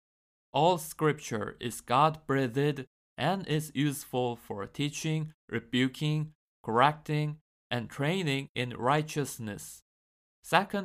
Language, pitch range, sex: Korean, 120-155 Hz, male